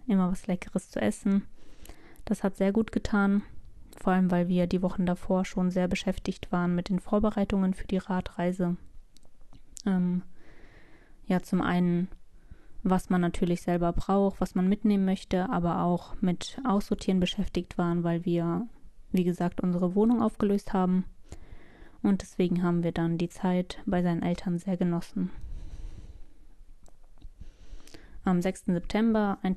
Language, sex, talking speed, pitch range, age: German, female, 140 wpm, 175-200 Hz, 20-39